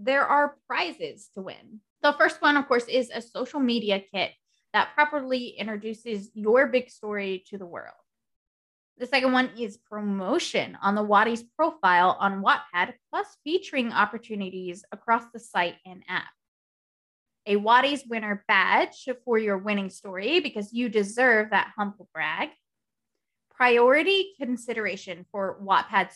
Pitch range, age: 200-255 Hz, 20-39